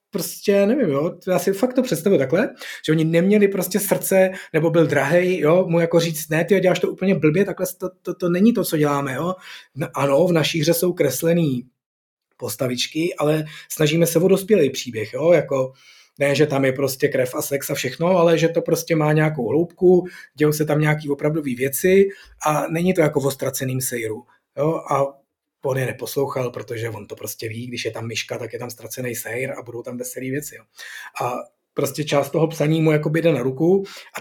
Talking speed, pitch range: 200 wpm, 140-170 Hz